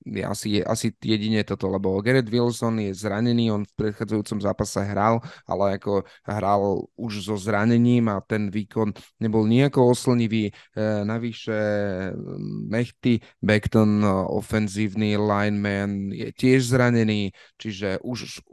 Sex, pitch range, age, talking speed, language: male, 100-115 Hz, 30-49, 120 wpm, Slovak